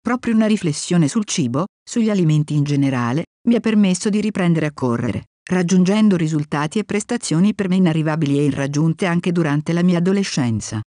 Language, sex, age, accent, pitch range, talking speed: Italian, female, 50-69, native, 150-205 Hz, 165 wpm